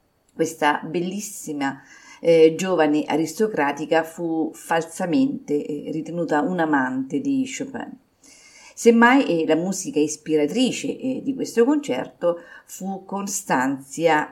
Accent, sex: native, female